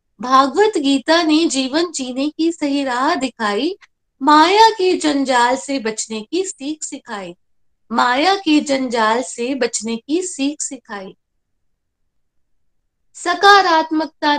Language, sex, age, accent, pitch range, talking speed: Hindi, female, 20-39, native, 235-315 Hz, 110 wpm